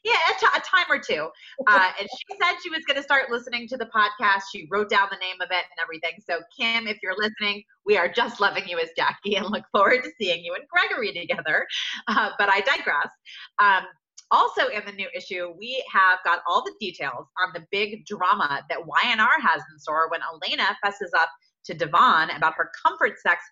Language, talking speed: English, 215 wpm